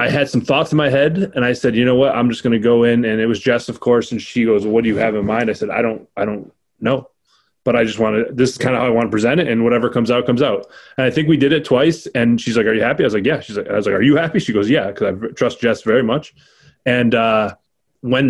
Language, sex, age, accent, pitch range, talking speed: English, male, 20-39, American, 115-140 Hz, 330 wpm